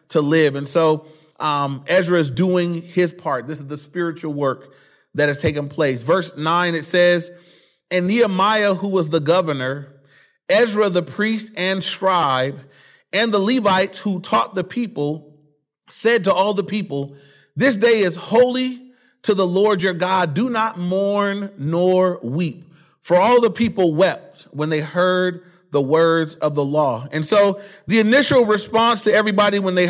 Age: 30-49